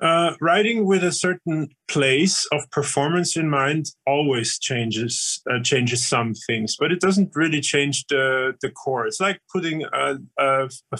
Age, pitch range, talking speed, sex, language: 30-49, 125-145 Hz, 165 wpm, male, English